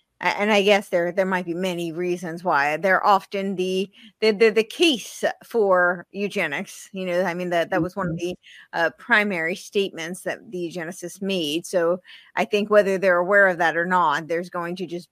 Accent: American